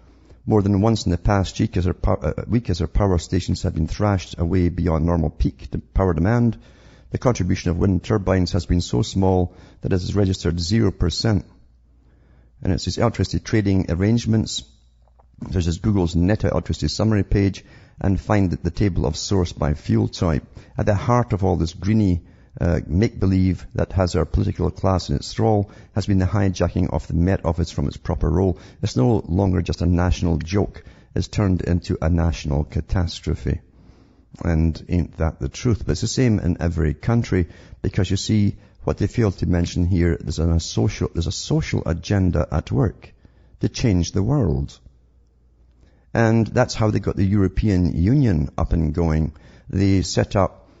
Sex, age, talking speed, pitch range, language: male, 50-69, 180 wpm, 80-100 Hz, English